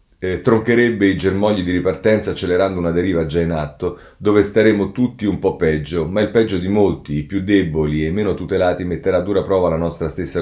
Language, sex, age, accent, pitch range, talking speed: Italian, male, 40-59, native, 80-105 Hz, 205 wpm